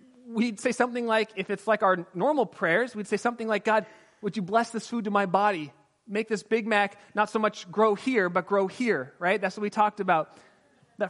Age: 30-49